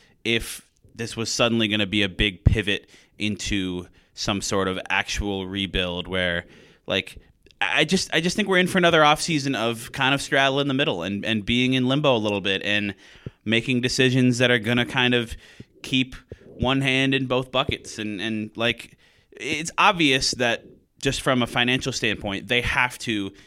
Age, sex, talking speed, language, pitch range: 20-39, male, 185 wpm, English, 100-130 Hz